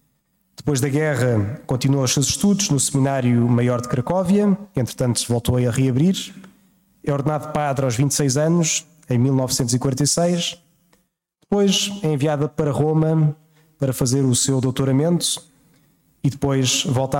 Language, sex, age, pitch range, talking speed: Portuguese, male, 20-39, 135-160 Hz, 135 wpm